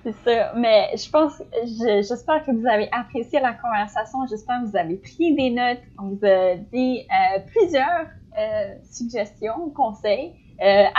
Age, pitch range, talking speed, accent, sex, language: 10-29, 200-260 Hz, 165 wpm, Canadian, female, French